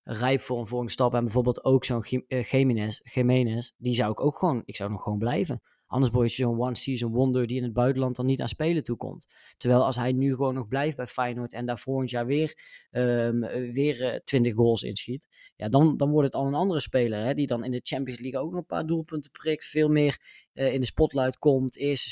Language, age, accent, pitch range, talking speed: Dutch, 20-39, Dutch, 120-135 Hz, 245 wpm